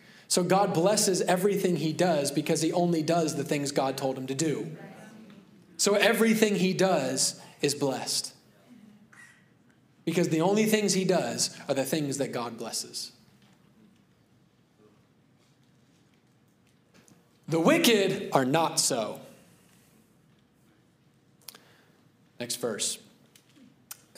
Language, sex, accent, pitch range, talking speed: English, male, American, 150-195 Hz, 105 wpm